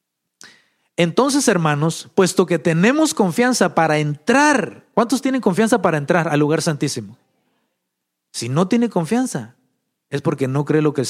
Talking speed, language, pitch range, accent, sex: 145 wpm, English, 145-215 Hz, Mexican, male